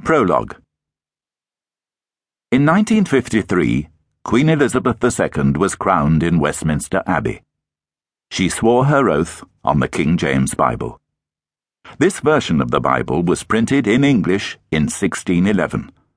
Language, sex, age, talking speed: English, male, 60-79, 115 wpm